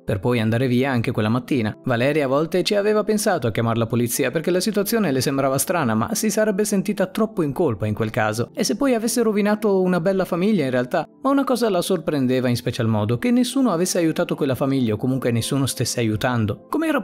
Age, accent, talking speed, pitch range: 30-49, native, 220 wpm, 120-190 Hz